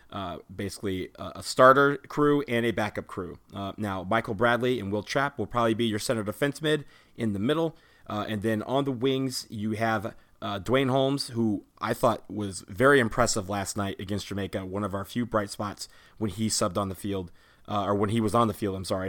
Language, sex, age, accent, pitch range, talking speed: English, male, 30-49, American, 100-115 Hz, 220 wpm